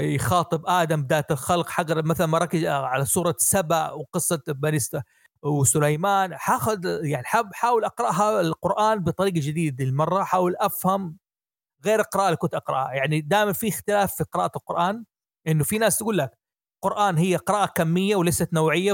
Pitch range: 155-210 Hz